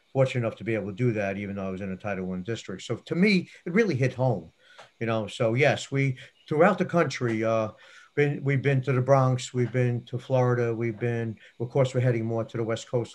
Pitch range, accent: 105-130 Hz, American